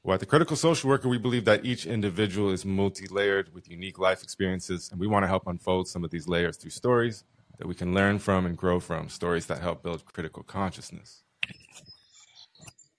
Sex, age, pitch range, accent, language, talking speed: male, 30-49, 90-100 Hz, American, English, 200 wpm